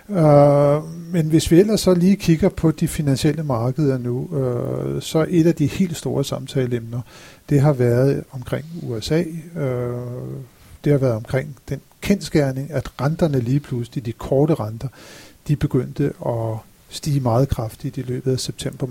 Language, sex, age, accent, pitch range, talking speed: Danish, male, 50-69, native, 120-150 Hz, 150 wpm